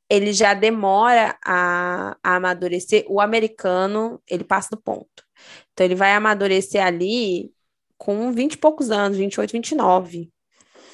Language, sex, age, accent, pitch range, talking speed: Portuguese, female, 10-29, Brazilian, 180-240 Hz, 155 wpm